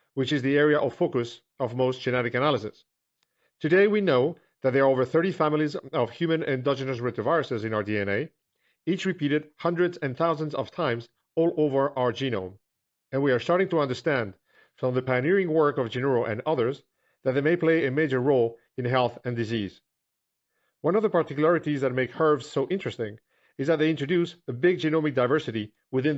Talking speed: 185 wpm